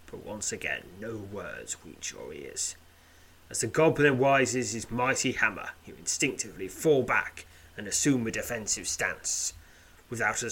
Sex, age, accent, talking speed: male, 30-49, British, 150 wpm